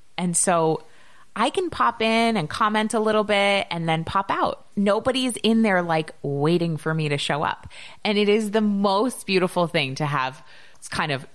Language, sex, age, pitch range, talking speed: English, female, 20-39, 140-200 Hz, 195 wpm